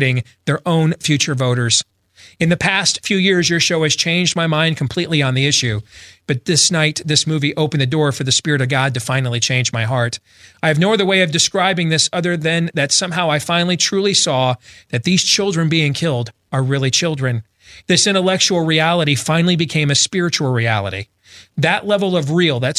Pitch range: 125-170 Hz